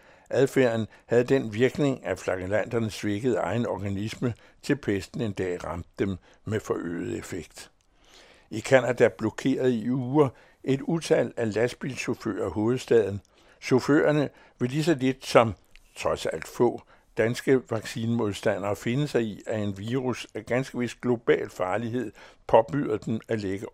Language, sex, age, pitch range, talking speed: Danish, male, 60-79, 105-135 Hz, 135 wpm